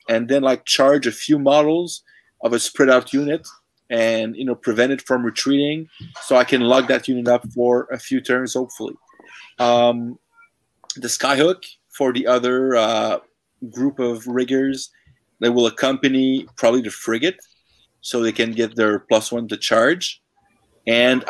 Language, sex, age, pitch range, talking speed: English, male, 30-49, 115-140 Hz, 160 wpm